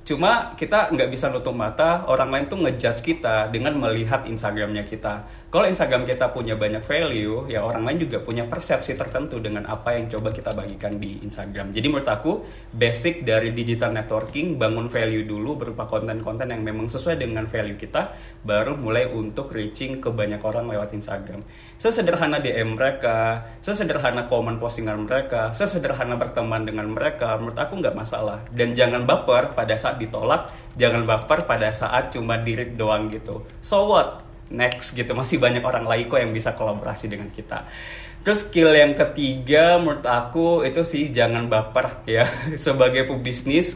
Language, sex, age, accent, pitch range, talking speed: Indonesian, male, 20-39, native, 110-135 Hz, 165 wpm